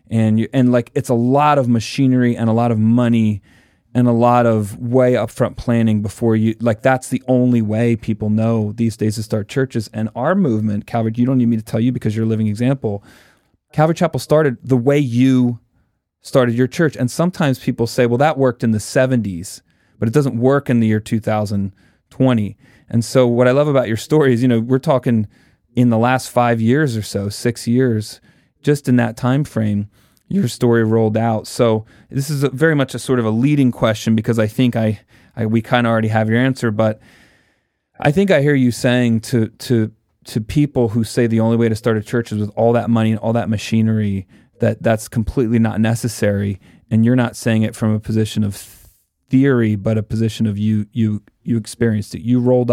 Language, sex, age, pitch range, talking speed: English, male, 30-49, 110-125 Hz, 215 wpm